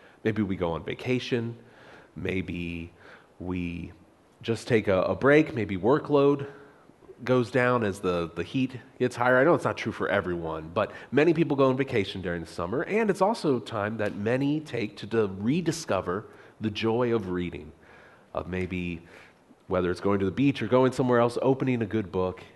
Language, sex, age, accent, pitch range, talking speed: English, male, 30-49, American, 100-130 Hz, 180 wpm